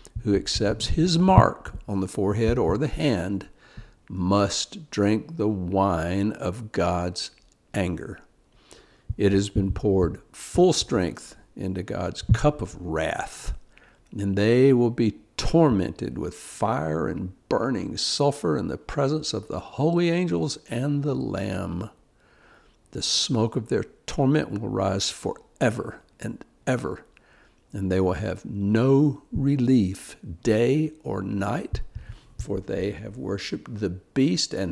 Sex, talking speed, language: male, 130 wpm, English